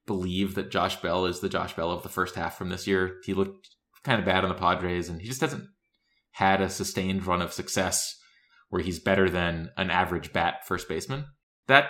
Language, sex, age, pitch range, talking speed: English, male, 20-39, 85-100 Hz, 215 wpm